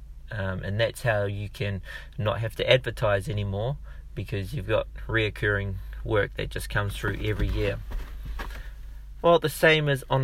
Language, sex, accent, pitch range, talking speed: English, male, Australian, 100-125 Hz, 160 wpm